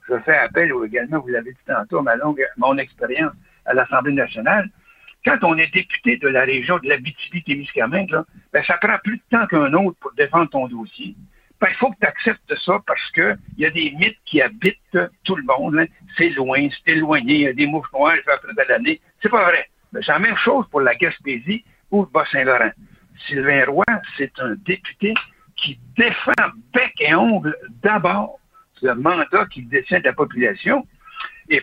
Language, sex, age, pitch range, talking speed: French, male, 60-79, 145-230 Hz, 195 wpm